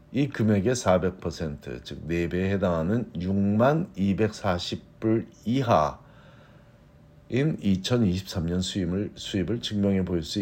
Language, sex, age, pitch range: Korean, male, 50-69, 90-125 Hz